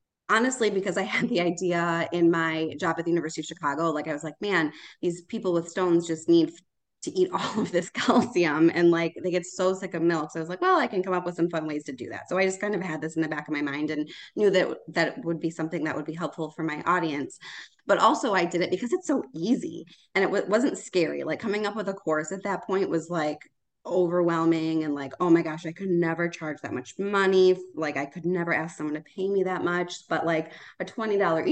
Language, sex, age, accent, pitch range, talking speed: English, female, 20-39, American, 160-195 Hz, 255 wpm